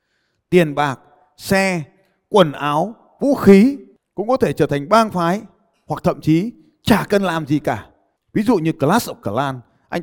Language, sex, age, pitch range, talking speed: Vietnamese, male, 20-39, 115-185 Hz, 175 wpm